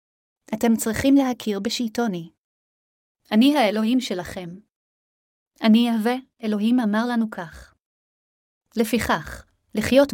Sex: female